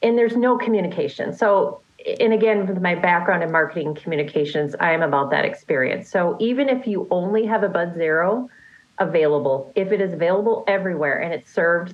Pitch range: 160-210 Hz